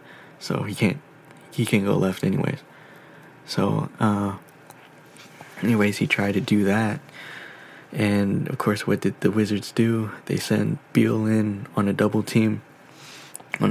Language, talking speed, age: English, 145 wpm, 20-39